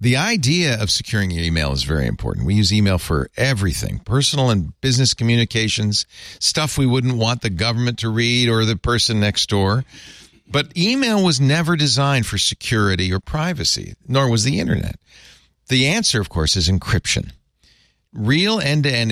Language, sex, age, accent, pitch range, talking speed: English, male, 50-69, American, 95-135 Hz, 165 wpm